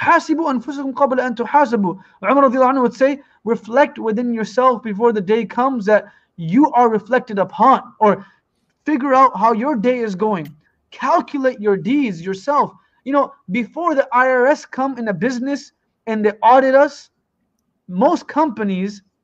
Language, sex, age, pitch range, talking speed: English, male, 20-39, 210-275 Hz, 140 wpm